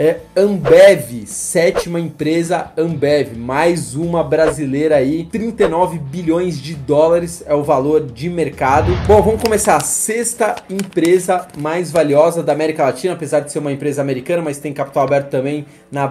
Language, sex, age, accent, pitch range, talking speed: Portuguese, male, 20-39, Brazilian, 150-180 Hz, 155 wpm